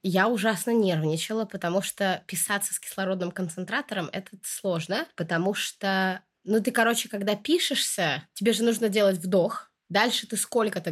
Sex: female